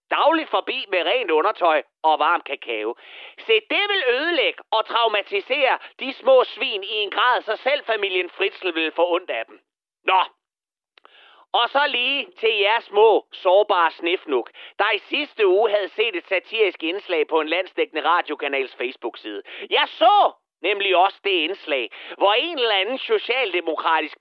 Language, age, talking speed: Danish, 30-49, 155 wpm